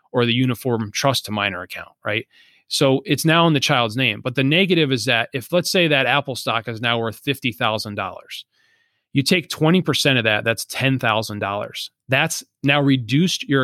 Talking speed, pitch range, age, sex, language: 180 wpm, 115-145 Hz, 30-49, male, English